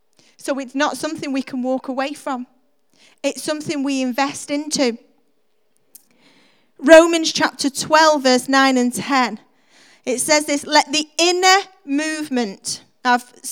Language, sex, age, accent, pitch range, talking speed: English, female, 40-59, British, 275-365 Hz, 130 wpm